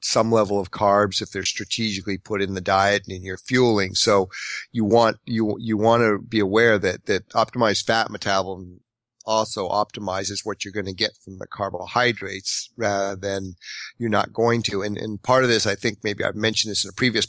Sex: male